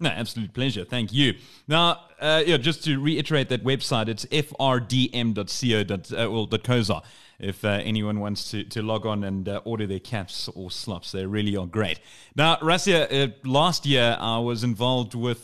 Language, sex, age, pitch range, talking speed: English, male, 30-49, 115-140 Hz, 175 wpm